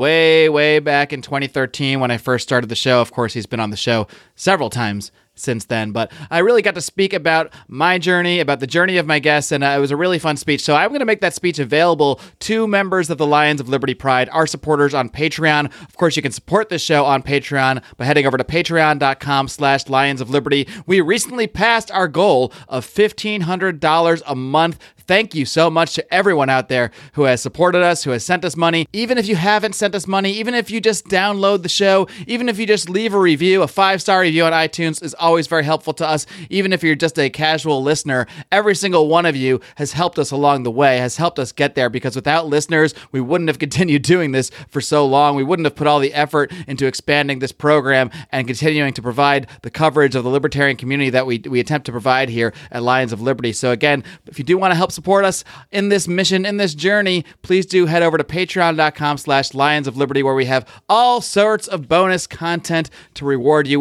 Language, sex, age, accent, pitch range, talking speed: English, male, 30-49, American, 135-180 Hz, 225 wpm